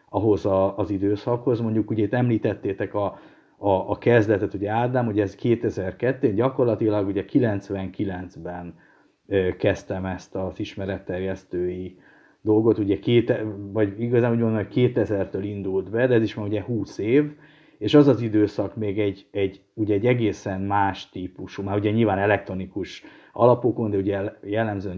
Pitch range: 95-115 Hz